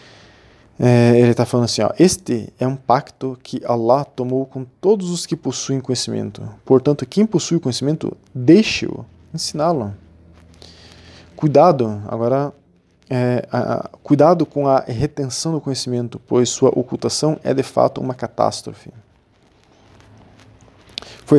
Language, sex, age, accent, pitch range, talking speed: Portuguese, male, 20-39, Brazilian, 110-135 Hz, 125 wpm